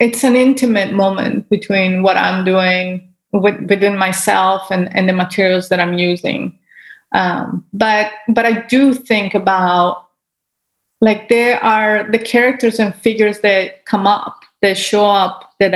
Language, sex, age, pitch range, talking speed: English, female, 30-49, 185-230 Hz, 150 wpm